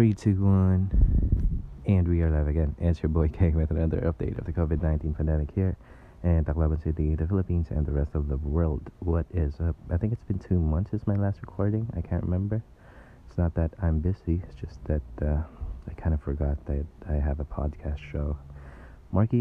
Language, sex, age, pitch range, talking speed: Filipino, male, 20-39, 75-90 Hz, 205 wpm